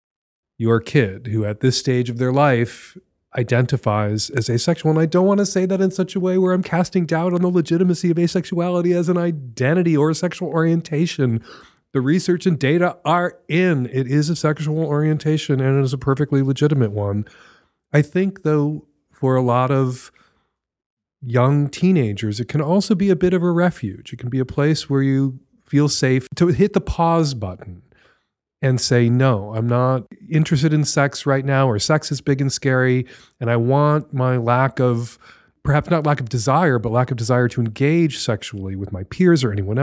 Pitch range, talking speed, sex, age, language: 120-165 Hz, 195 wpm, male, 40-59, English